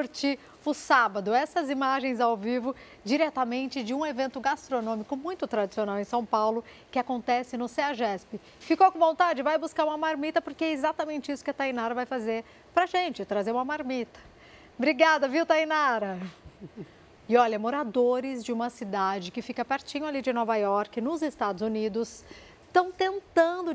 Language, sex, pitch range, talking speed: Portuguese, female, 235-300 Hz, 160 wpm